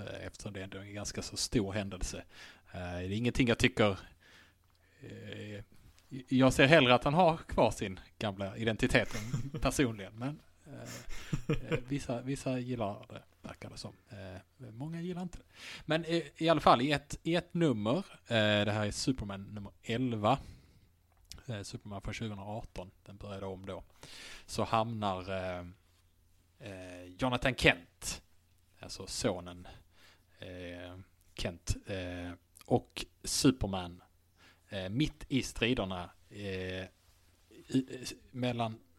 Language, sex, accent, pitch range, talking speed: English, male, Norwegian, 95-125 Hz, 110 wpm